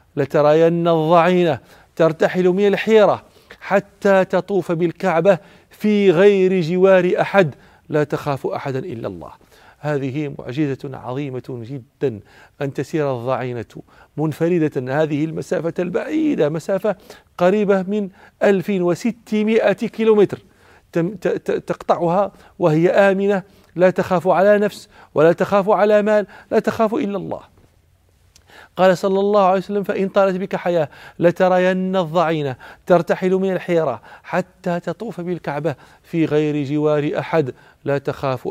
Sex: male